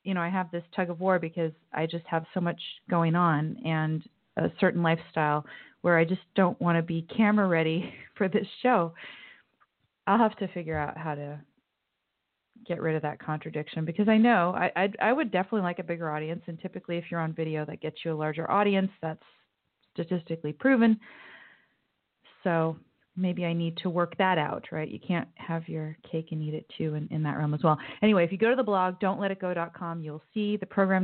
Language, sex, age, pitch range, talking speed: English, female, 30-49, 160-190 Hz, 205 wpm